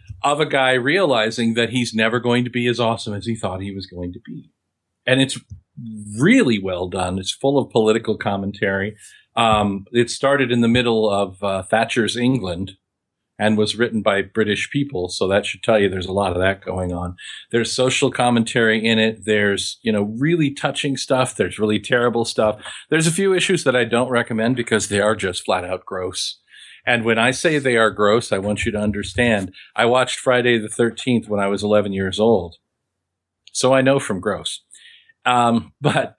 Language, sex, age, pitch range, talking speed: English, male, 50-69, 100-125 Hz, 195 wpm